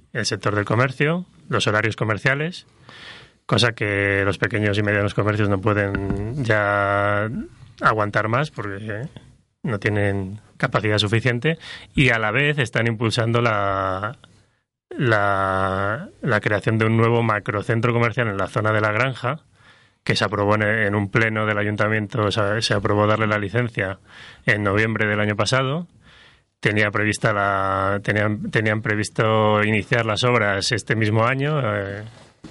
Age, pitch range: 30-49, 105-125 Hz